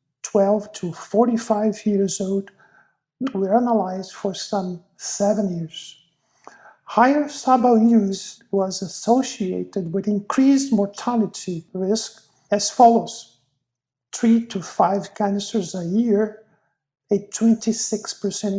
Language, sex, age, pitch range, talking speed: English, male, 50-69, 185-225 Hz, 95 wpm